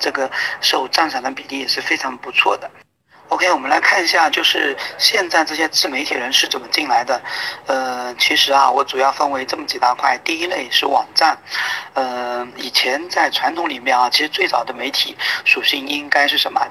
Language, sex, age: Chinese, male, 40-59